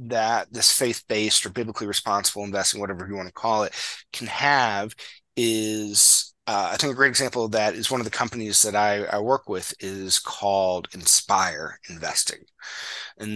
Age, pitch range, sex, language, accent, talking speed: 30-49, 95-115 Hz, male, English, American, 175 wpm